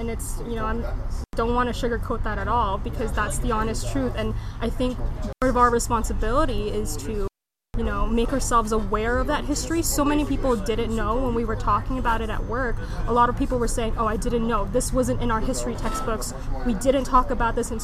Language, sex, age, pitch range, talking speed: English, female, 20-39, 225-265 Hz, 230 wpm